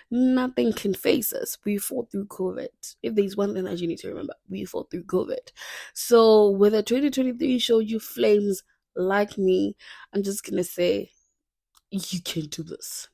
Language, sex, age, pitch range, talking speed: English, female, 20-39, 180-230 Hz, 185 wpm